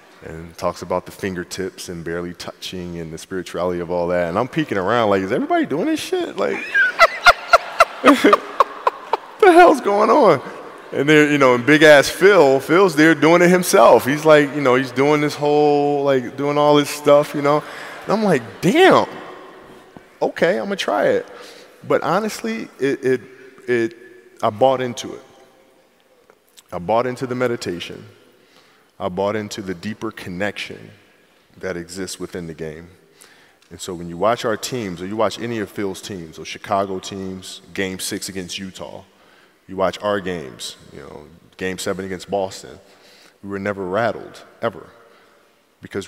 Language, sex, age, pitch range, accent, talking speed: English, male, 20-39, 90-145 Hz, American, 170 wpm